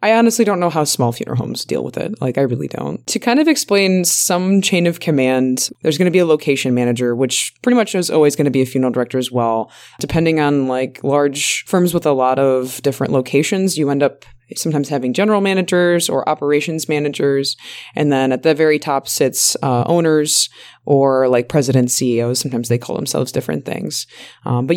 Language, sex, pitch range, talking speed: English, female, 135-175 Hz, 205 wpm